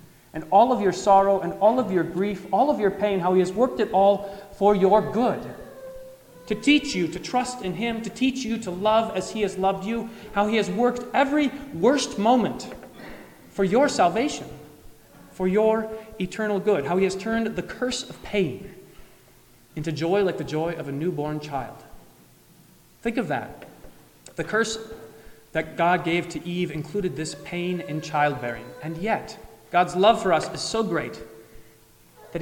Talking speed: 180 wpm